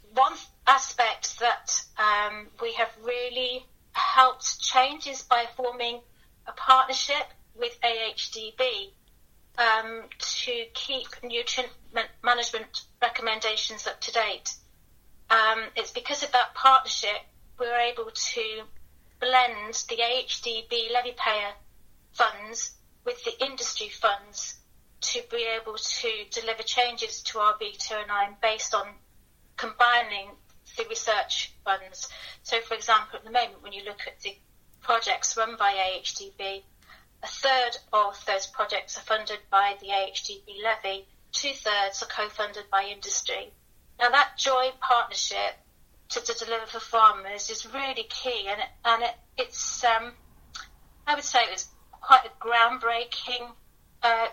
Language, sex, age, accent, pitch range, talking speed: English, female, 40-59, British, 220-265 Hz, 130 wpm